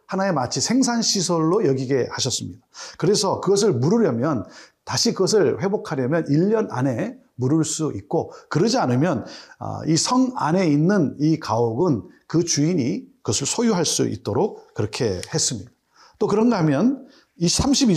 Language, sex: Korean, male